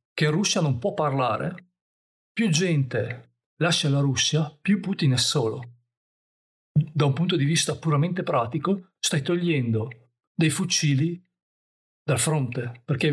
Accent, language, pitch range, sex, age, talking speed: native, Italian, 125-150 Hz, male, 40-59, 135 wpm